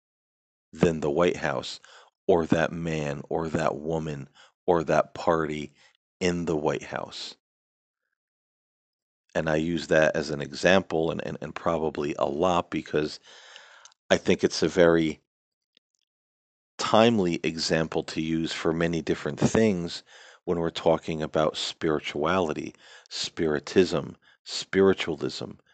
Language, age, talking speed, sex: English, 40-59, 120 wpm, male